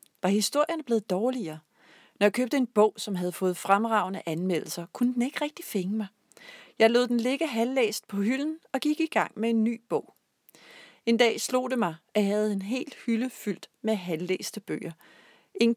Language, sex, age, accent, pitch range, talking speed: Danish, female, 40-59, native, 175-235 Hz, 195 wpm